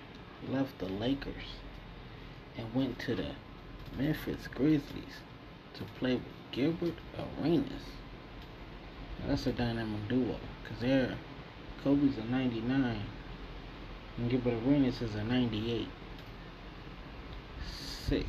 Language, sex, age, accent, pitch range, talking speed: English, male, 20-39, American, 110-135 Hz, 100 wpm